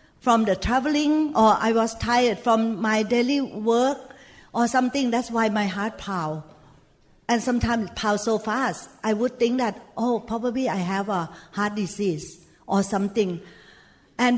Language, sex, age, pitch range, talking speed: English, female, 60-79, 200-250 Hz, 160 wpm